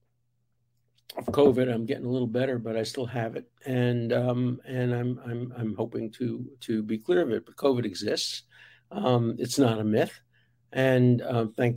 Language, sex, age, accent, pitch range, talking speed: English, male, 60-79, American, 115-130 Hz, 185 wpm